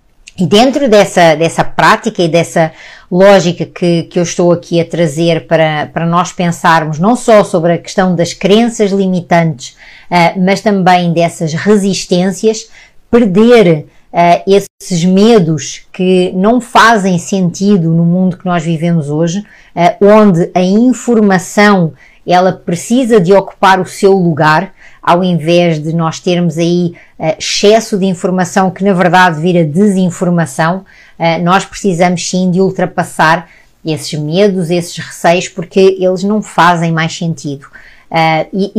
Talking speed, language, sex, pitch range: 140 wpm, Portuguese, female, 170-200 Hz